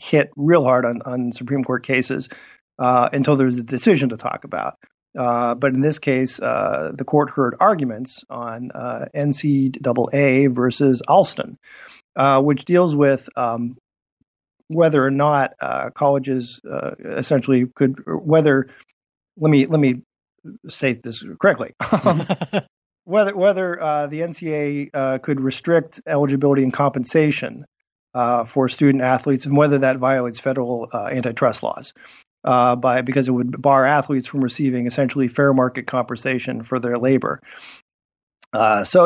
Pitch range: 125-145 Hz